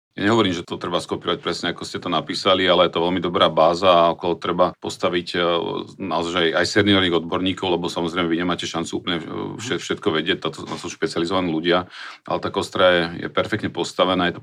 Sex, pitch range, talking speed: male, 85-95 Hz, 185 wpm